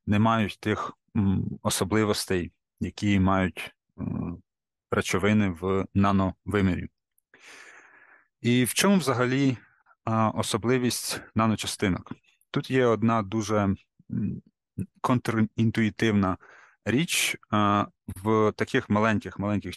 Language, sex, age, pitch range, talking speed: Ukrainian, male, 30-49, 100-115 Hz, 75 wpm